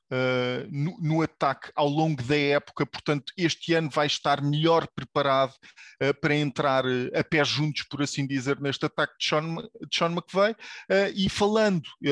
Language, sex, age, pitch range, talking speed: English, male, 20-39, 145-165 Hz, 170 wpm